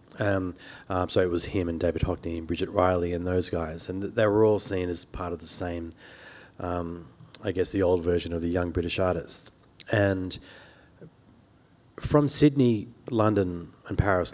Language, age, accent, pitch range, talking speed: English, 30-49, Australian, 85-95 Hz, 180 wpm